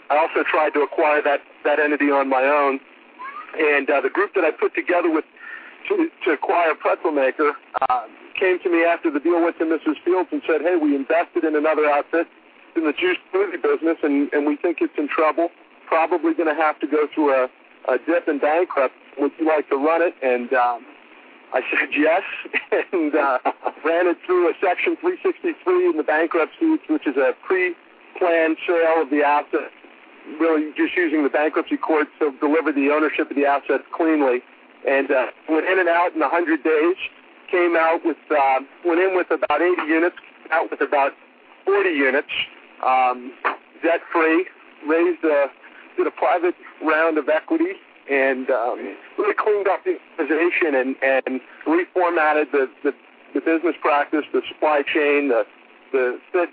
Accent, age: American, 50-69